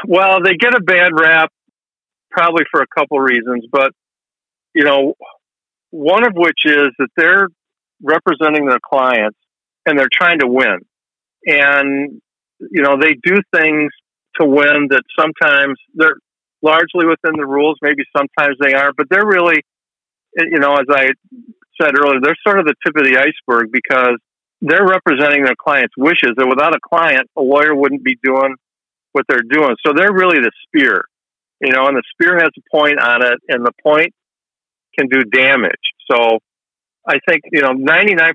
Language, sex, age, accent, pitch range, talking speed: English, male, 50-69, American, 130-155 Hz, 170 wpm